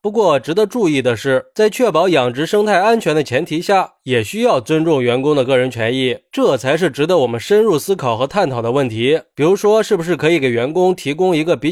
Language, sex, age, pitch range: Chinese, male, 20-39, 140-205 Hz